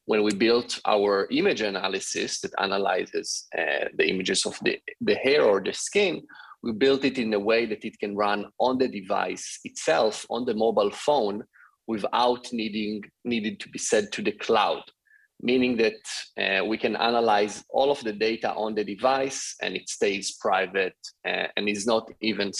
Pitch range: 105-135 Hz